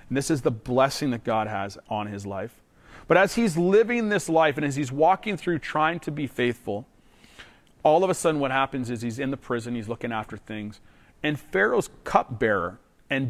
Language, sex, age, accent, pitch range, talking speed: English, male, 40-59, American, 115-150 Hz, 205 wpm